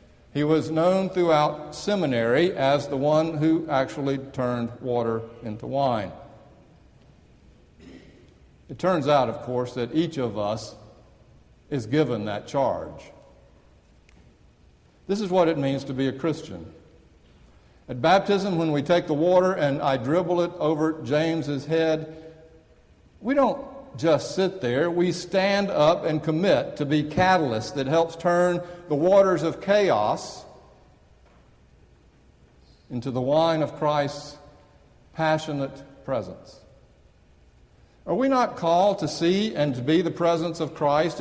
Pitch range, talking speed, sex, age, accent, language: 135-175 Hz, 130 wpm, male, 60-79, American, English